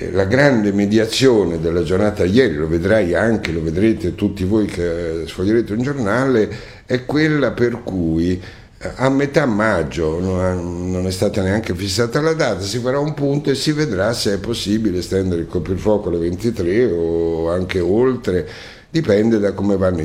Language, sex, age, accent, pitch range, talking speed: Italian, male, 60-79, native, 90-120 Hz, 160 wpm